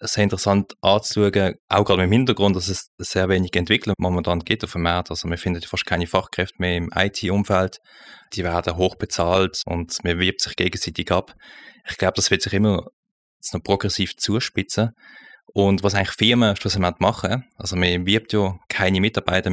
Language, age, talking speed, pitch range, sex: German, 20-39, 180 wpm, 90-100 Hz, male